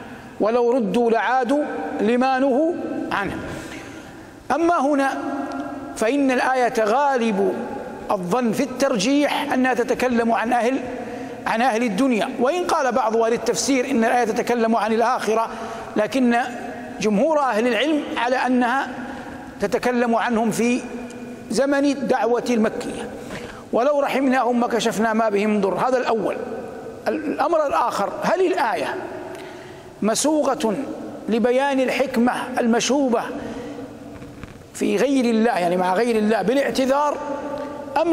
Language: Arabic